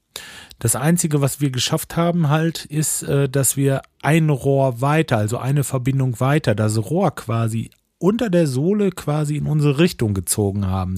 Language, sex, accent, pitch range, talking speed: German, male, German, 110-140 Hz, 160 wpm